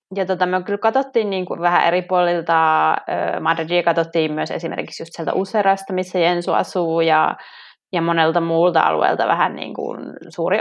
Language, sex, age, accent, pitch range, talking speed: Finnish, female, 20-39, native, 170-205 Hz, 165 wpm